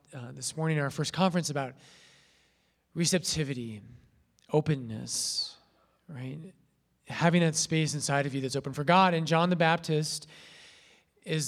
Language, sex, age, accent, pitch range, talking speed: English, male, 30-49, American, 120-160 Hz, 130 wpm